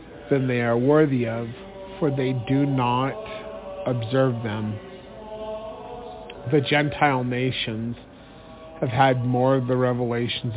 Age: 40-59